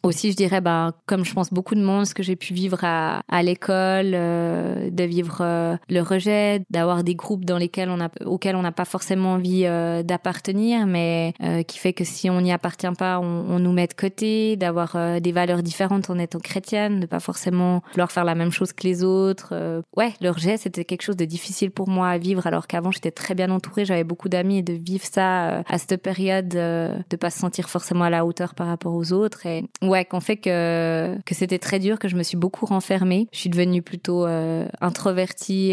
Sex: female